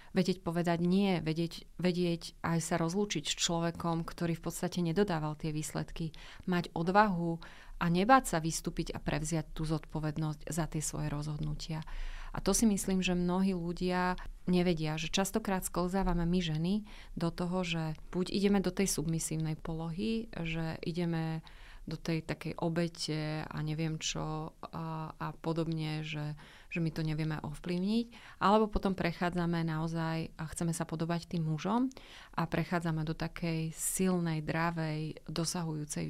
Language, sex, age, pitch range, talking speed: Slovak, female, 30-49, 160-180 Hz, 145 wpm